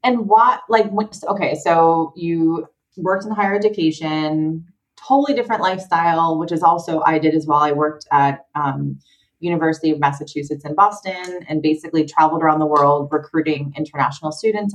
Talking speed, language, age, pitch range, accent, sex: 155 wpm, English, 30-49, 150-195 Hz, American, female